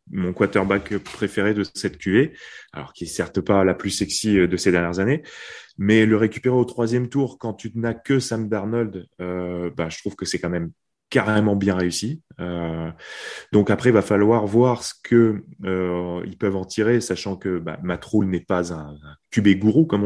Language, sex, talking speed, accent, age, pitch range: French, male, 195 wpm, French, 20-39, 95-115 Hz